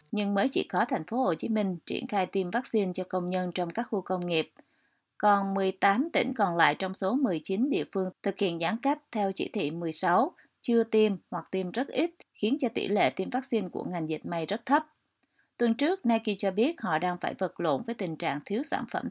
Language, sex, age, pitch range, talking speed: Vietnamese, female, 20-39, 180-235 Hz, 230 wpm